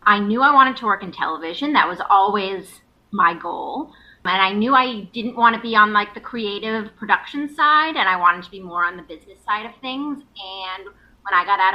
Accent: American